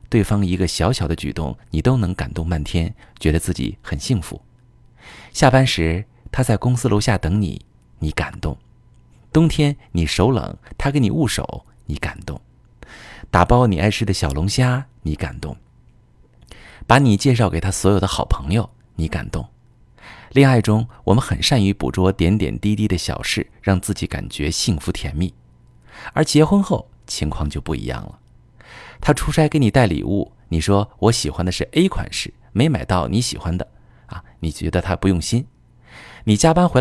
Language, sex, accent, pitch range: Chinese, male, native, 85-120 Hz